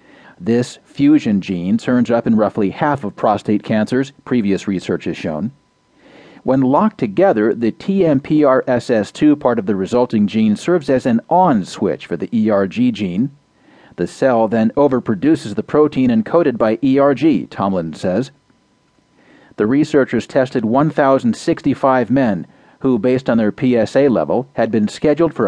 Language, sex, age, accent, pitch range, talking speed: English, male, 40-59, American, 110-150 Hz, 140 wpm